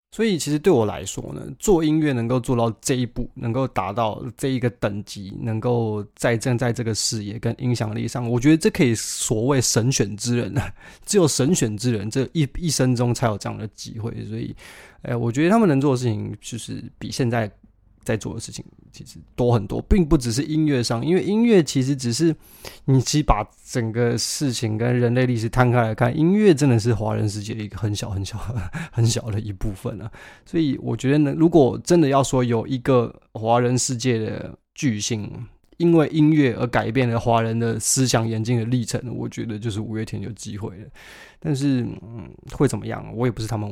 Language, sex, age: Chinese, male, 20-39